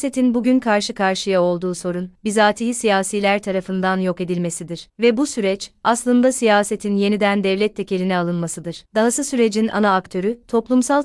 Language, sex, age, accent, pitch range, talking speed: Turkish, female, 30-49, native, 185-220 Hz, 135 wpm